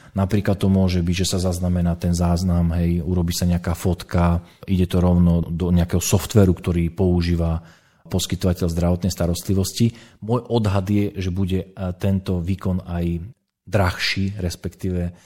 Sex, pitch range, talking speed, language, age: male, 85-100 Hz, 140 wpm, Slovak, 40-59